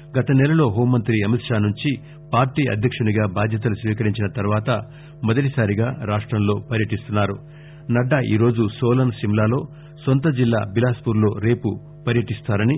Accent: Indian